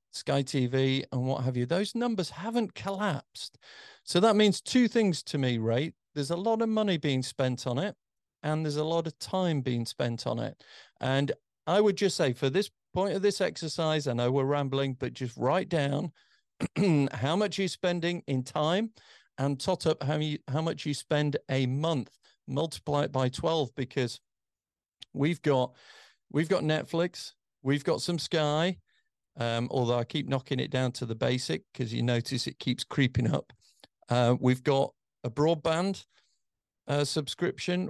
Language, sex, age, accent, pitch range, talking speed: English, male, 40-59, British, 125-165 Hz, 175 wpm